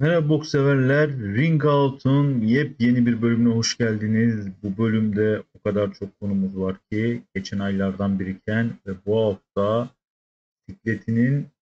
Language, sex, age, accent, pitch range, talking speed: Turkish, male, 40-59, native, 105-130 Hz, 125 wpm